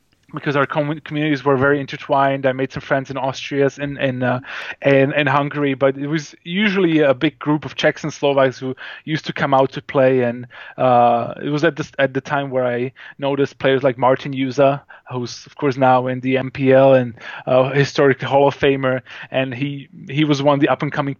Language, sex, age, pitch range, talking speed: English, male, 20-39, 130-150 Hz, 215 wpm